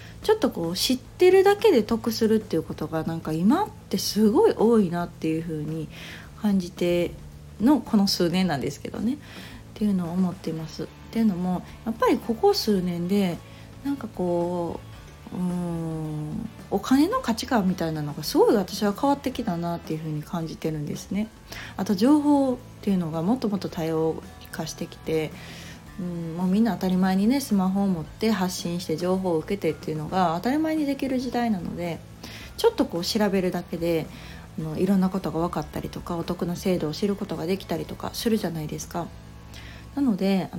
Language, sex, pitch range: Japanese, female, 165-225 Hz